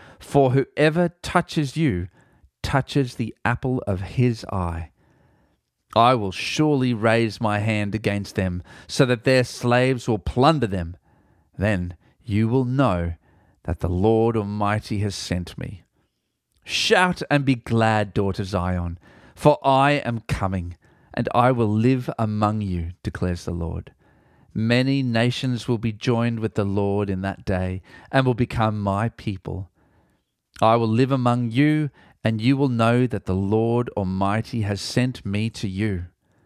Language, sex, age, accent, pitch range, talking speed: English, male, 40-59, Australian, 95-125 Hz, 145 wpm